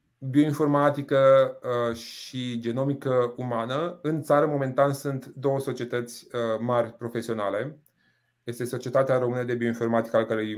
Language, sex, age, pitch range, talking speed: Romanian, male, 30-49, 115-140 Hz, 110 wpm